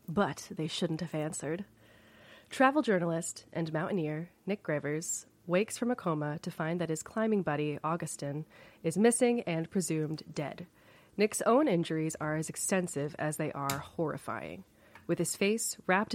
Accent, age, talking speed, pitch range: American, 30-49, 150 wpm, 150-200 Hz